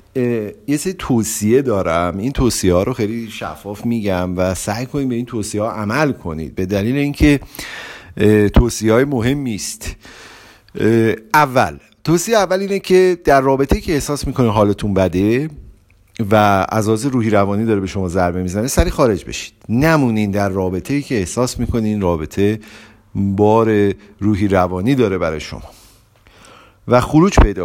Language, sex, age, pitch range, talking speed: Persian, male, 50-69, 95-120 Hz, 145 wpm